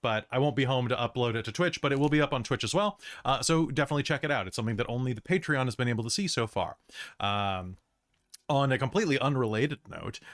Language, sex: English, male